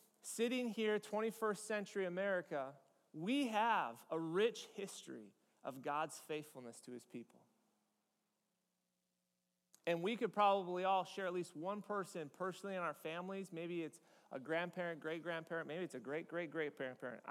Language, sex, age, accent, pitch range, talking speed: English, male, 30-49, American, 155-205 Hz, 145 wpm